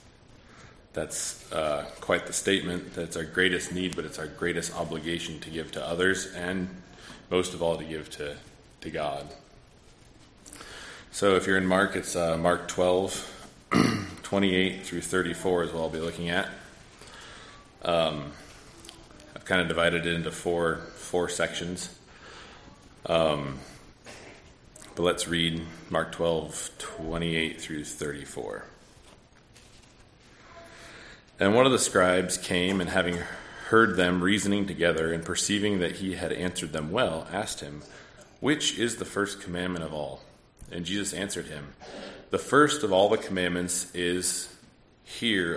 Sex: male